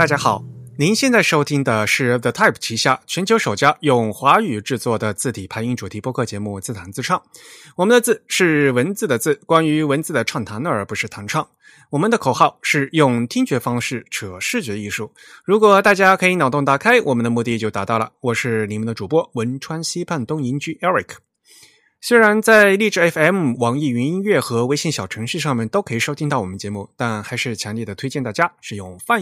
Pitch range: 115-170 Hz